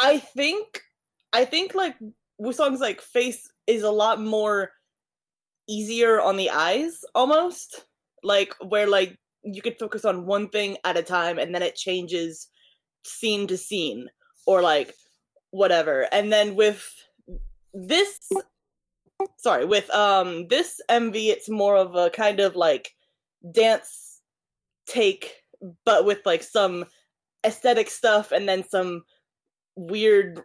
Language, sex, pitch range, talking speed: English, female, 190-255 Hz, 130 wpm